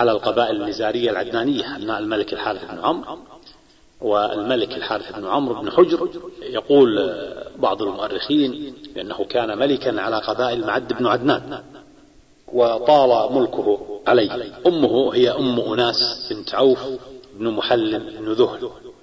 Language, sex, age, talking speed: Arabic, male, 40-59, 125 wpm